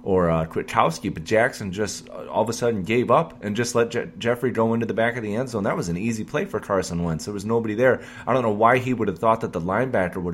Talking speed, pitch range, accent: 285 wpm, 95-120 Hz, American